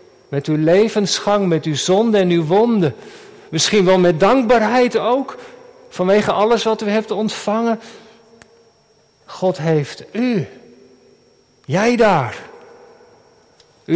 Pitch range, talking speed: 180-230 Hz, 110 wpm